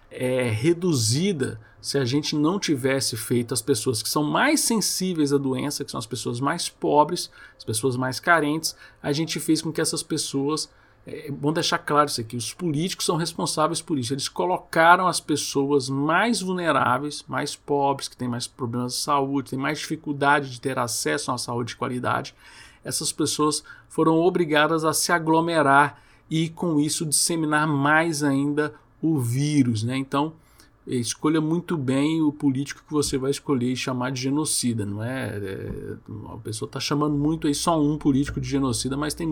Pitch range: 125-155 Hz